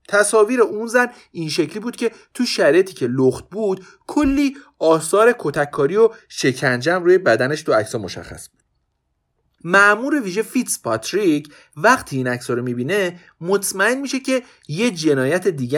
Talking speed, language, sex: 145 wpm, Persian, male